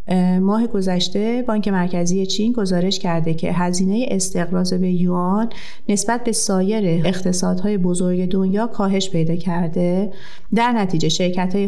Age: 30-49